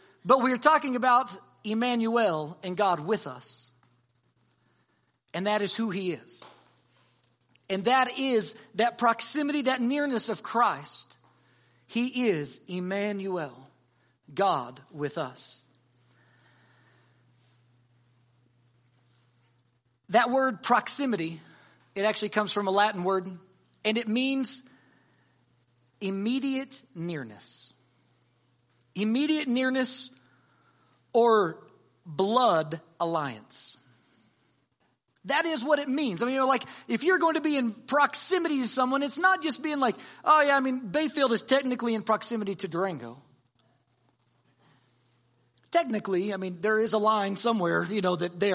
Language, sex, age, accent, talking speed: English, male, 40-59, American, 120 wpm